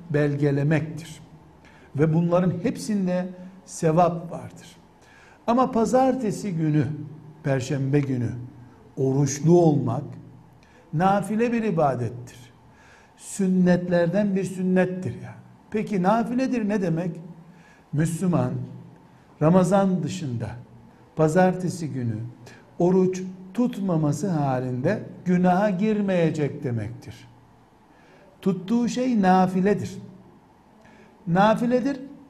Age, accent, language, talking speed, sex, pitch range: 60-79, native, Turkish, 70 wpm, male, 150-205 Hz